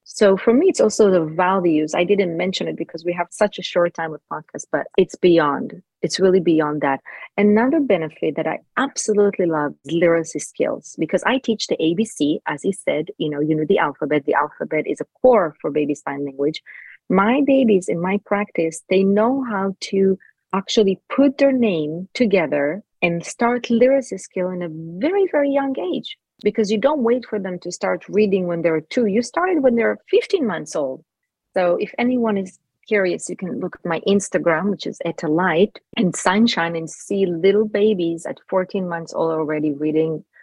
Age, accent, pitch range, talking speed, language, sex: 30-49, Italian, 165-225 Hz, 190 wpm, English, female